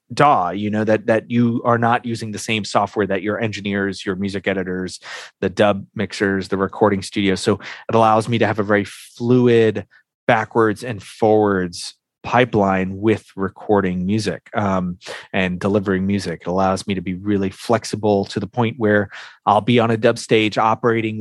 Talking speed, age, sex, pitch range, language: 175 wpm, 30-49, male, 100-120 Hz, English